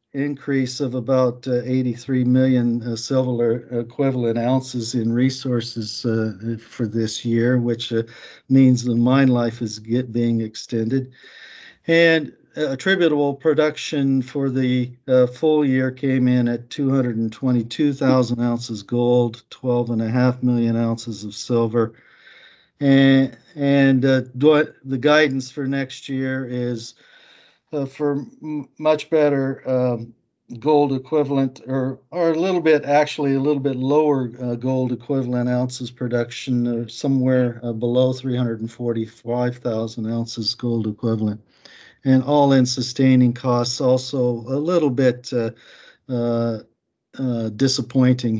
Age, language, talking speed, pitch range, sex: 50-69, English, 120 wpm, 120-135 Hz, male